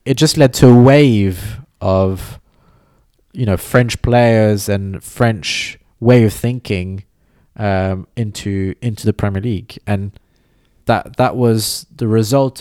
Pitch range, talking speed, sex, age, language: 95-120 Hz, 135 wpm, male, 20-39, English